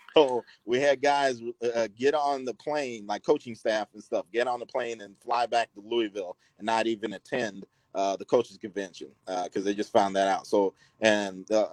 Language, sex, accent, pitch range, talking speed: English, male, American, 110-125 Hz, 210 wpm